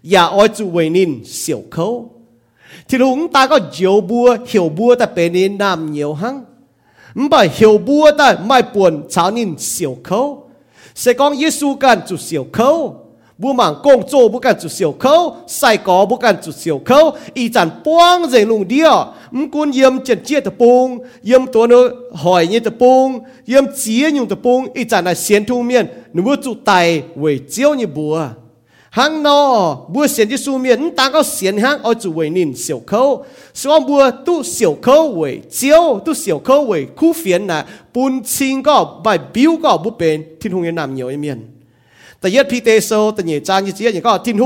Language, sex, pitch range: English, male, 180-270 Hz